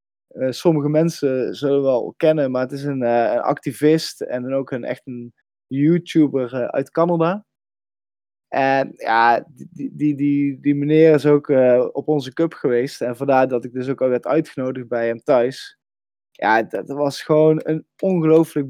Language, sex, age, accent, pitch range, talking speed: Dutch, male, 20-39, Dutch, 130-160 Hz, 180 wpm